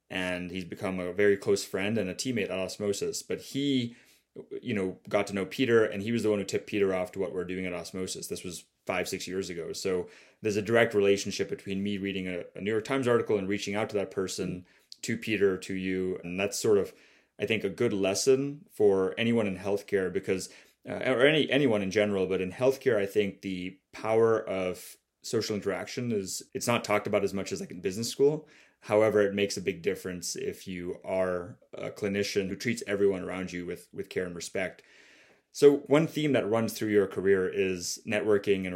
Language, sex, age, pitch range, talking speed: English, male, 20-39, 95-110 Hz, 215 wpm